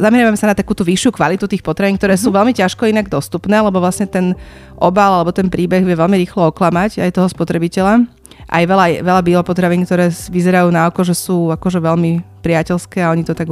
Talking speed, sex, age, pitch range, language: 205 wpm, female, 30-49, 160-190 Hz, Slovak